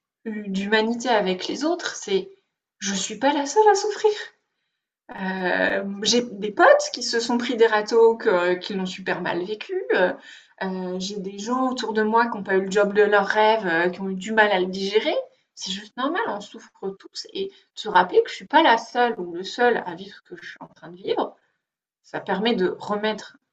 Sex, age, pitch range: female, 20-39, 190-255 Hz